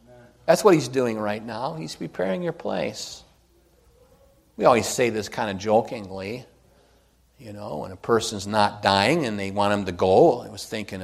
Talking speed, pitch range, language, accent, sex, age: 180 wpm, 85-115 Hz, English, American, male, 50-69